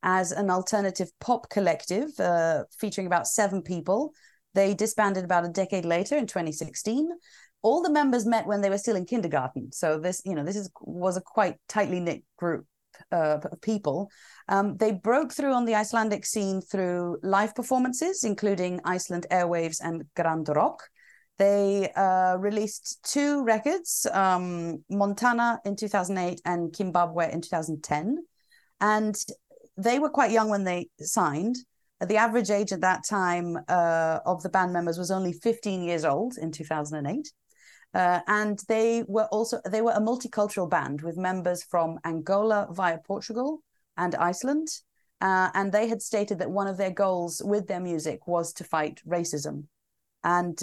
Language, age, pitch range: English, 30-49, 170-215 Hz